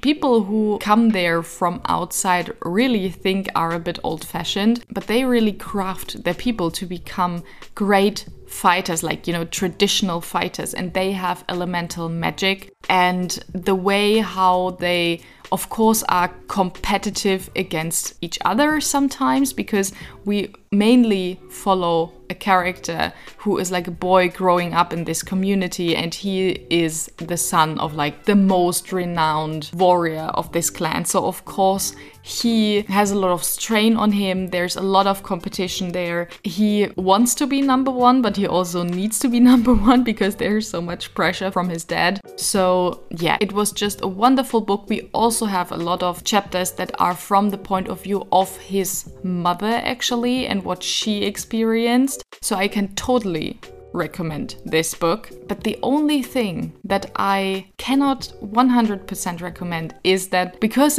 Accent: German